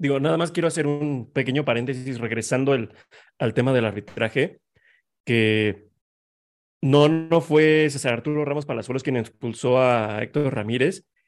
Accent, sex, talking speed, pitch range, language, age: Mexican, male, 145 wpm, 125-155 Hz, Spanish, 30-49